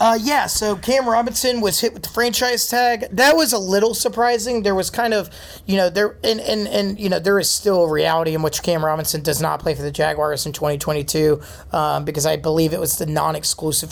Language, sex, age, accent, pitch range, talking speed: English, male, 30-49, American, 155-205 Hz, 230 wpm